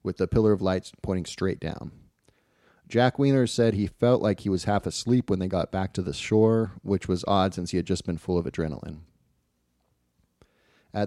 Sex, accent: male, American